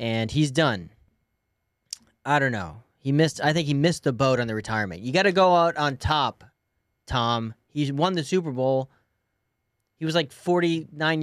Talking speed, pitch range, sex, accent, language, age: 180 wpm, 115-165 Hz, male, American, English, 30-49